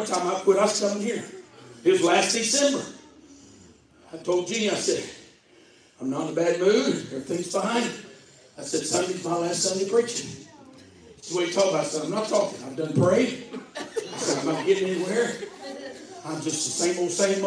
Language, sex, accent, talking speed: English, male, American, 190 wpm